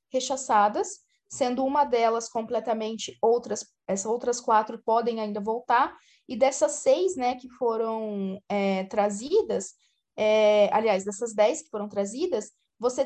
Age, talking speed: 20-39, 120 wpm